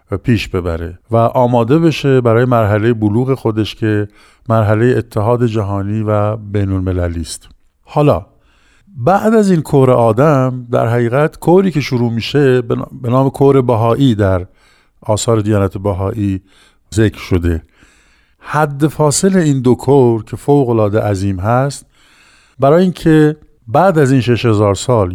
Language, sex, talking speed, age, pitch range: Persian, male, 140 wpm, 50-69, 105-135 Hz